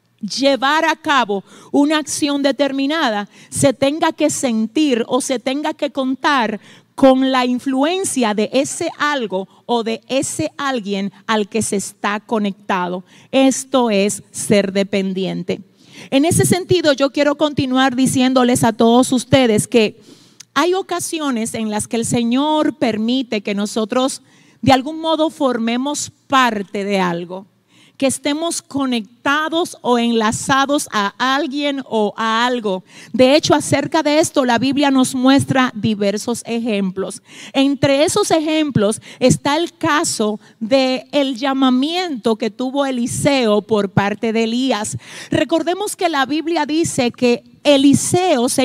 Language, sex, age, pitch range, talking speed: Spanish, female, 40-59, 220-295 Hz, 130 wpm